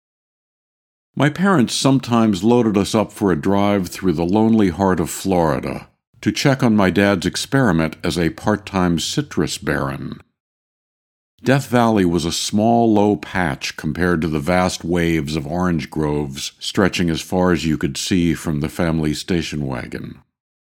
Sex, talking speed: male, 155 wpm